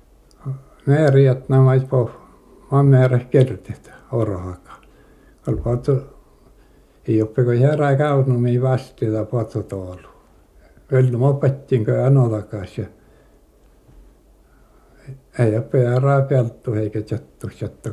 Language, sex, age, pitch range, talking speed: Finnish, male, 60-79, 110-135 Hz, 85 wpm